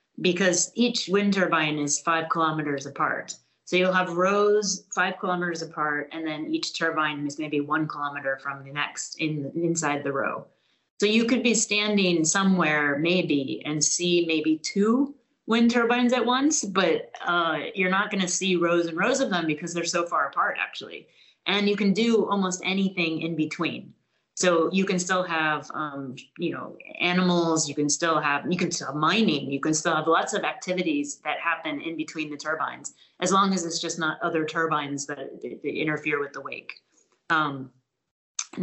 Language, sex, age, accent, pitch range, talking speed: English, female, 30-49, American, 150-190 Hz, 185 wpm